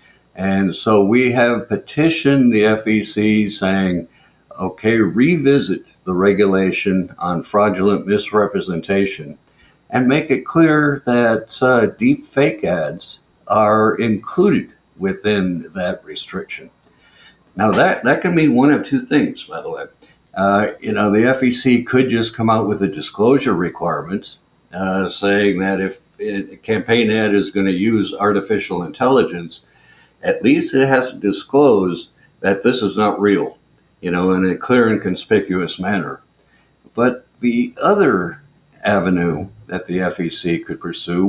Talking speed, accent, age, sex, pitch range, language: 140 wpm, American, 60-79, male, 95-120 Hz, English